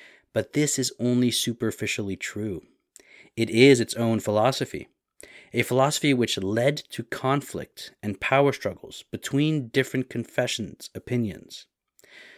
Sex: male